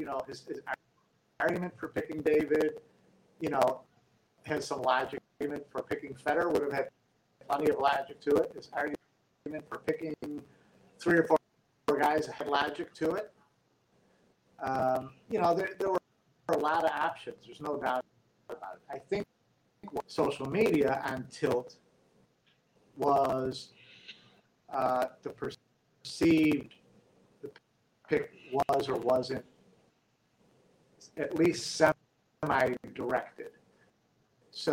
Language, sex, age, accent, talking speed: English, male, 50-69, American, 125 wpm